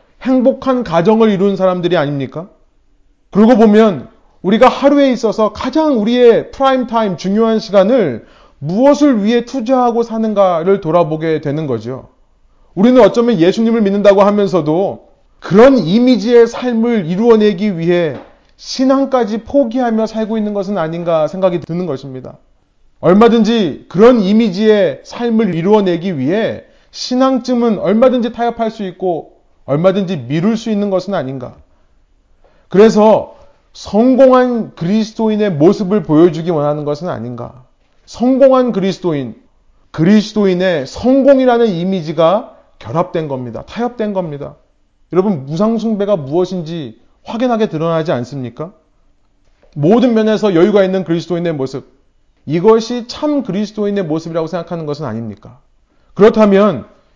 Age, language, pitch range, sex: 30-49, Korean, 165-230 Hz, male